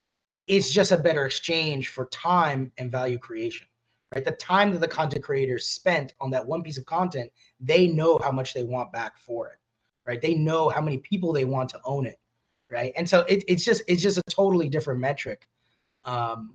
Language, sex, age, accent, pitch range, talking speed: English, male, 30-49, American, 130-180 Hz, 205 wpm